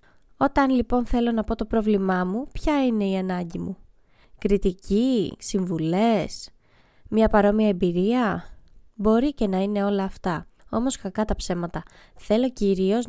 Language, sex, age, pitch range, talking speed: Greek, female, 20-39, 195-230 Hz, 140 wpm